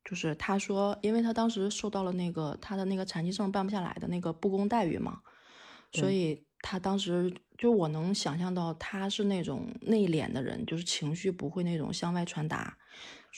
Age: 20-39